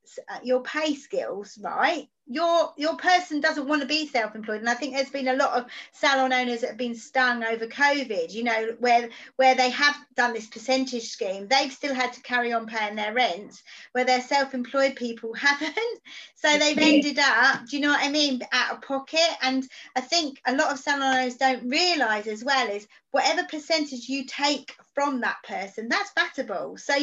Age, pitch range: 40-59, 235-290 Hz